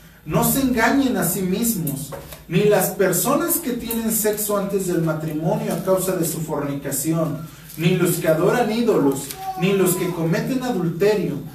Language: Spanish